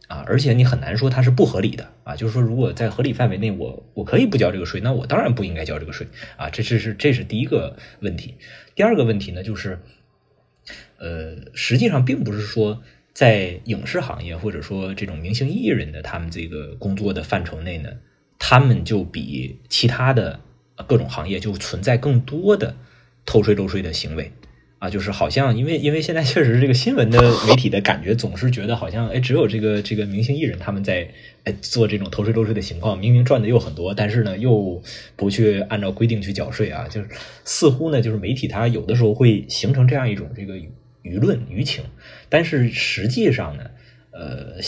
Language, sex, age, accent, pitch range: Chinese, male, 20-39, native, 95-125 Hz